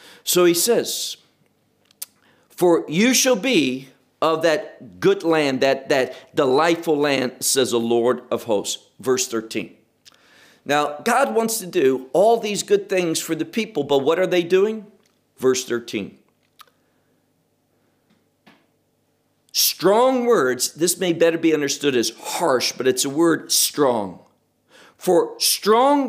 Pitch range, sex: 145-230 Hz, male